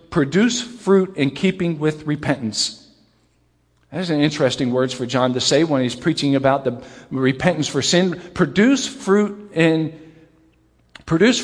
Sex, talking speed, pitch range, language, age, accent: male, 140 wpm, 135-170 Hz, English, 50-69, American